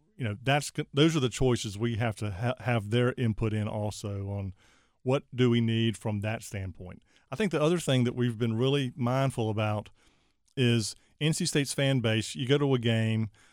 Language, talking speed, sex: English, 200 wpm, male